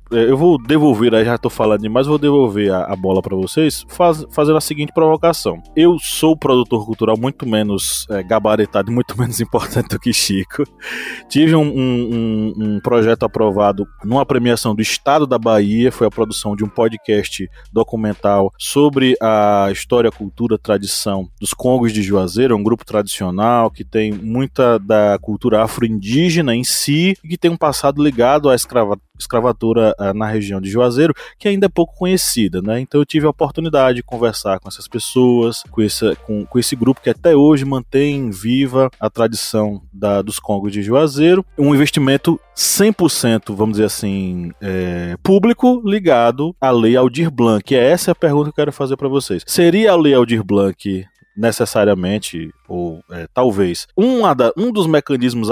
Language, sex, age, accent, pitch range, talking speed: Portuguese, male, 20-39, Brazilian, 105-145 Hz, 165 wpm